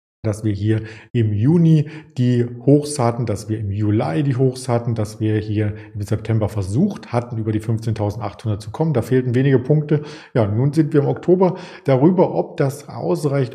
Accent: German